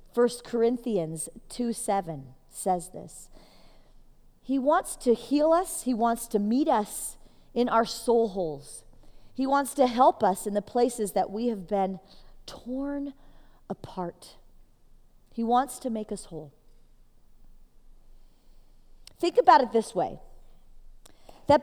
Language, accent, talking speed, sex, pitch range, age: English, American, 130 wpm, female, 205-265 Hz, 40-59